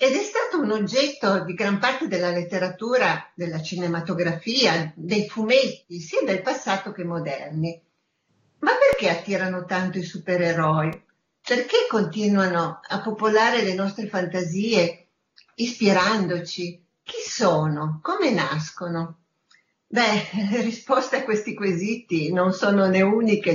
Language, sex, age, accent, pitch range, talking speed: Italian, female, 40-59, native, 175-255 Hz, 120 wpm